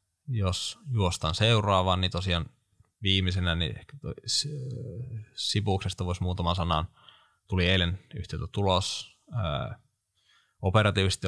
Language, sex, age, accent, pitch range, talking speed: Finnish, male, 20-39, native, 90-110 Hz, 90 wpm